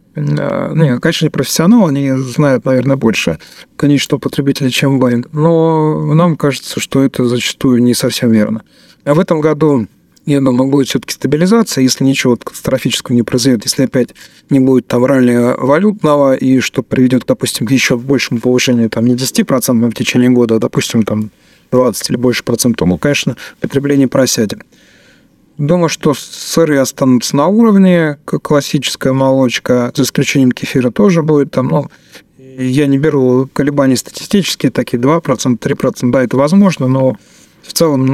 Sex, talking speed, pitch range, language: male, 150 wpm, 125-145 Hz, Russian